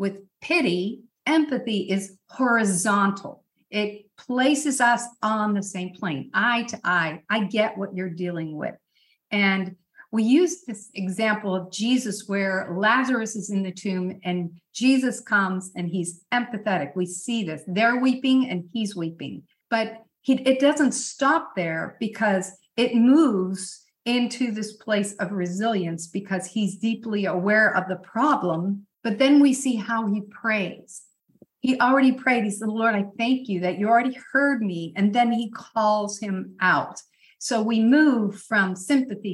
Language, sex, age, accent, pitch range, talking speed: English, female, 50-69, American, 190-240 Hz, 155 wpm